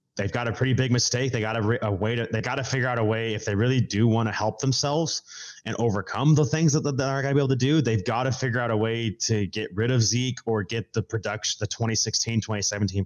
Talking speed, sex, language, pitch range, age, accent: 265 wpm, male, English, 105-125 Hz, 20-39, American